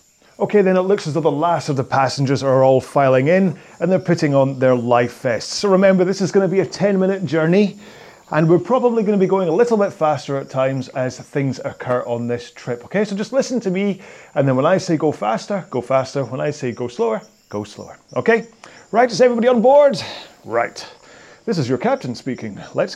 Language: English